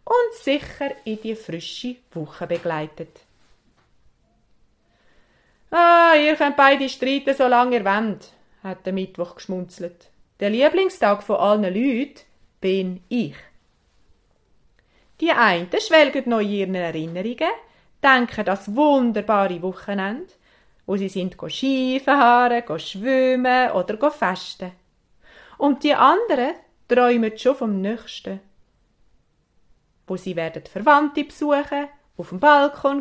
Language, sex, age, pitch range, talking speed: German, female, 30-49, 195-280 Hz, 105 wpm